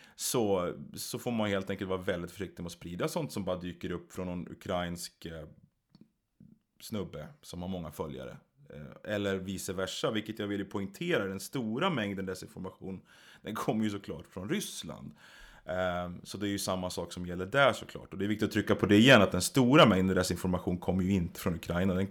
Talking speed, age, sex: 200 wpm, 30-49, male